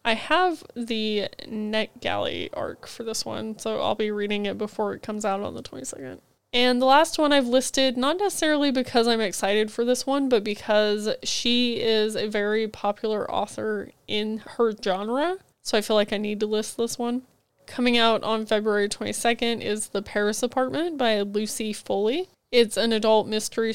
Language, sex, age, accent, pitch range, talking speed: English, female, 20-39, American, 210-245 Hz, 180 wpm